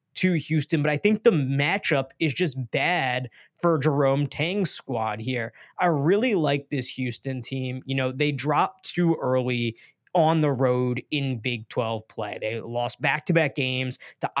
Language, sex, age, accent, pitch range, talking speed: English, male, 20-39, American, 135-165 Hz, 165 wpm